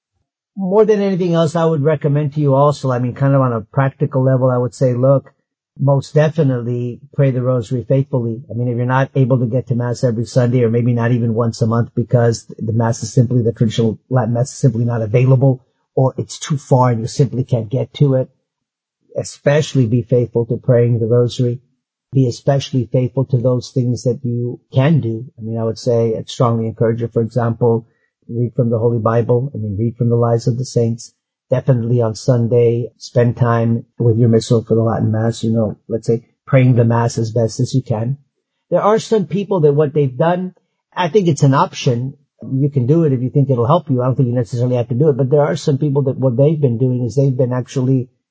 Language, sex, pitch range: English, male, 120-135 Hz